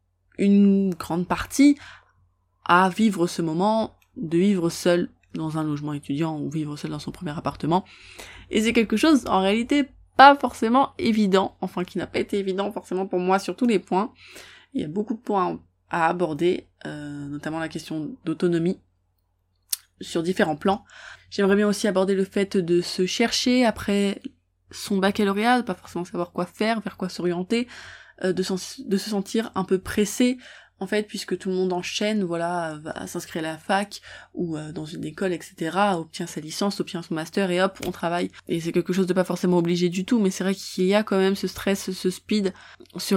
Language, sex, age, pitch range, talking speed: French, female, 20-39, 170-205 Hz, 195 wpm